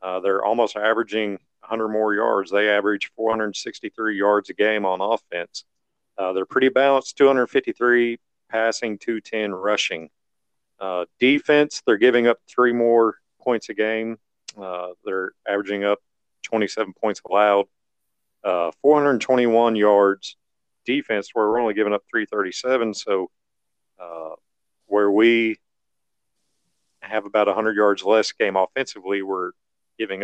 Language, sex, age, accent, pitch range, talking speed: English, male, 40-59, American, 100-115 Hz, 125 wpm